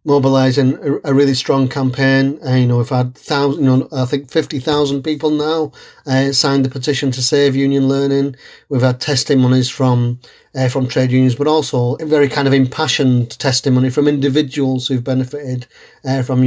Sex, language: male, English